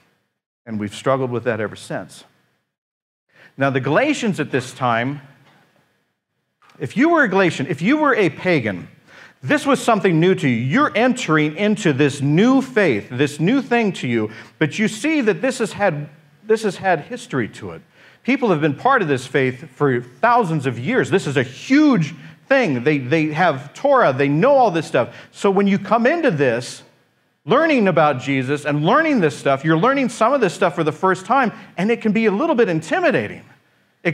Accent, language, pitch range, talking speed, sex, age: American, English, 140-205 Hz, 190 wpm, male, 50-69